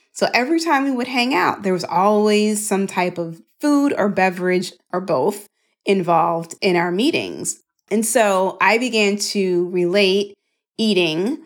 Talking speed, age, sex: 150 wpm, 30-49, female